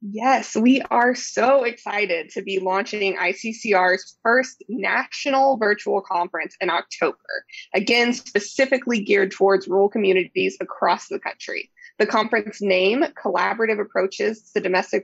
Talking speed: 125 wpm